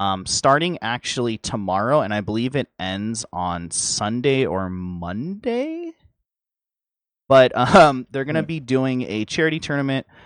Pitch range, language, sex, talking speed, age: 100-130 Hz, English, male, 135 wpm, 30-49